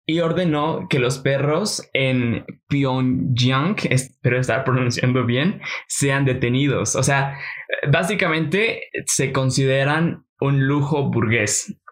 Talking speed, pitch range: 105 wpm, 125-145 Hz